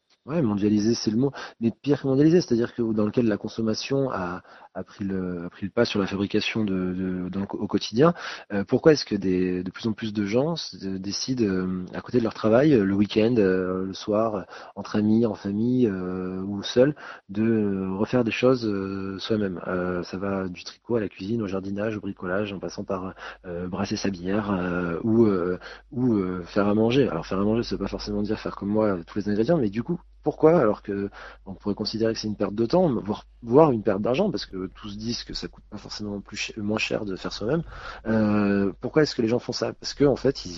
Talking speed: 225 wpm